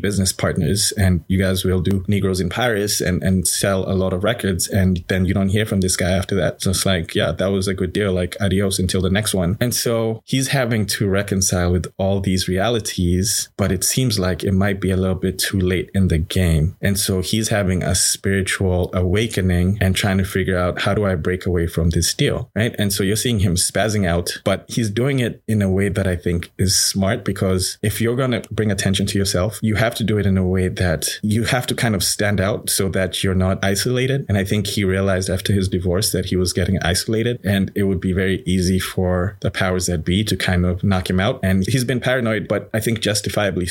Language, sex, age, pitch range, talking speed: English, male, 20-39, 95-105 Hz, 240 wpm